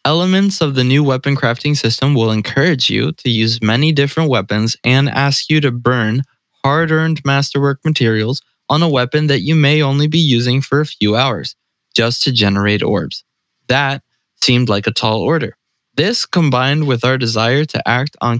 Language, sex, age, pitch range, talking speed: English, male, 20-39, 115-140 Hz, 175 wpm